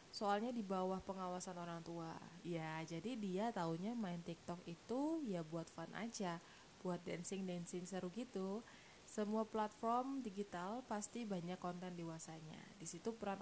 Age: 20-39